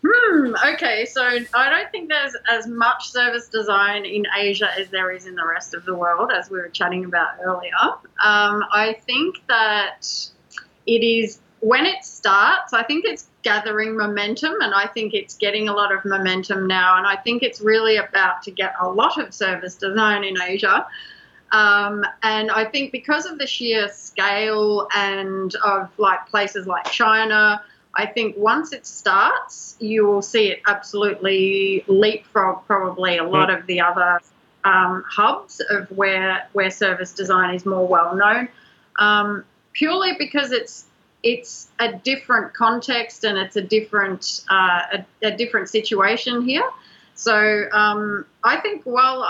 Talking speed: 160 wpm